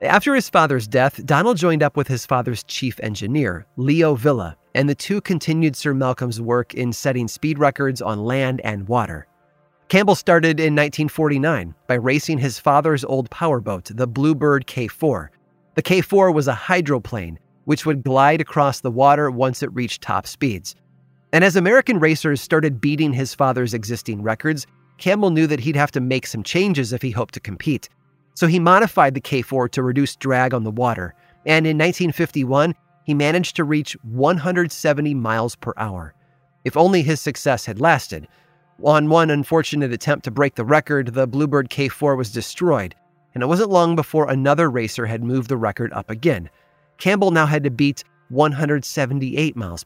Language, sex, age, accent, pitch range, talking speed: English, male, 30-49, American, 120-155 Hz, 170 wpm